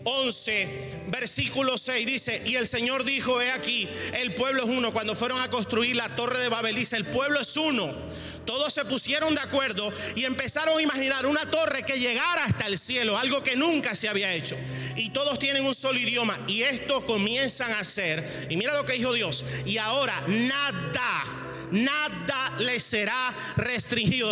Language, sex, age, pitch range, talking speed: Spanish, male, 30-49, 210-270 Hz, 180 wpm